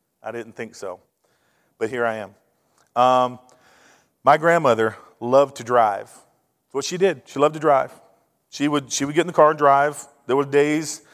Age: 40-59